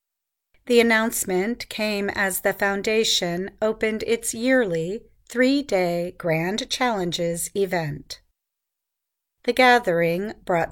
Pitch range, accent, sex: 175-220 Hz, American, female